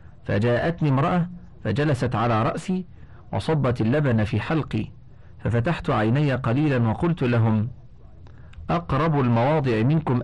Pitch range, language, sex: 105-140 Hz, Arabic, male